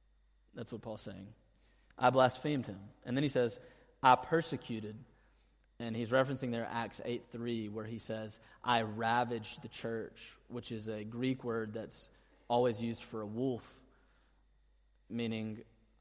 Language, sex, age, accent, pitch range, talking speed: English, male, 20-39, American, 110-130 Hz, 145 wpm